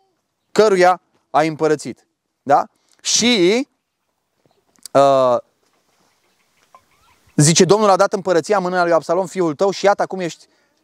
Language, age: Romanian, 20-39